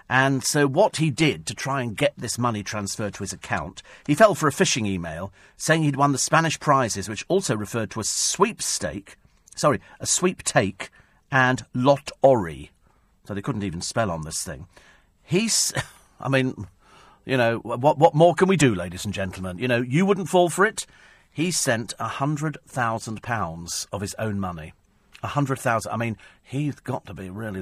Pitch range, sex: 105-150 Hz, male